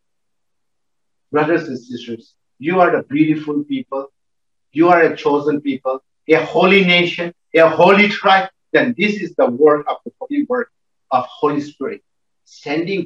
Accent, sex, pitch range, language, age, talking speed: Indian, male, 160-235 Hz, English, 50-69, 145 wpm